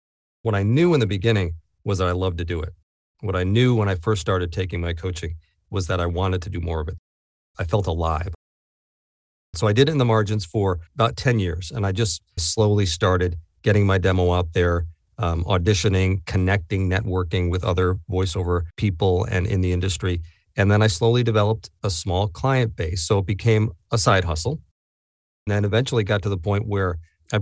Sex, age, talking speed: male, 40-59, 200 wpm